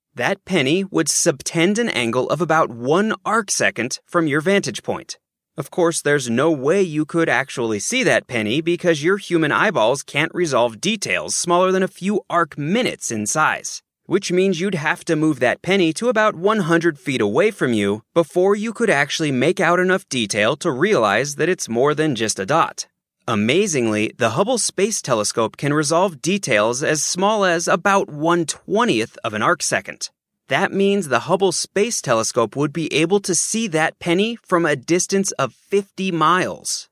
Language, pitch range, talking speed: English, 140-190 Hz, 175 wpm